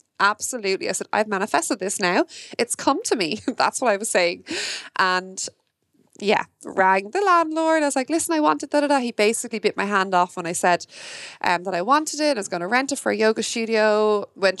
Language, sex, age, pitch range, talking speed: English, female, 20-39, 195-260 Hz, 220 wpm